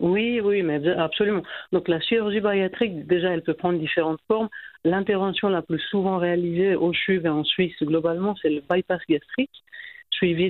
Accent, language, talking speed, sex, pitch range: French, French, 170 wpm, female, 160-190 Hz